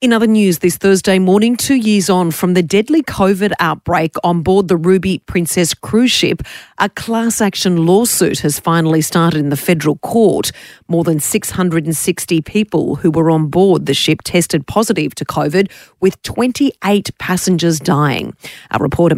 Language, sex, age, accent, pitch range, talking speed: English, female, 30-49, Australian, 155-185 Hz, 165 wpm